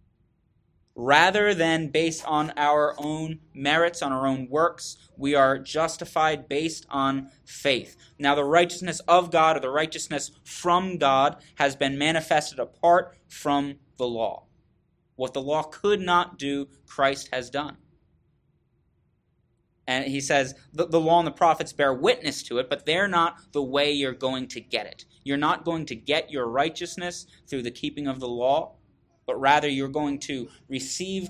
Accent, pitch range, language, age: American, 135-170 Hz, English, 20-39